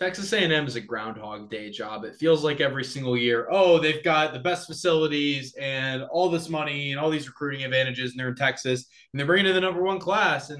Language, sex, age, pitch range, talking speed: English, male, 20-39, 115-150 Hz, 230 wpm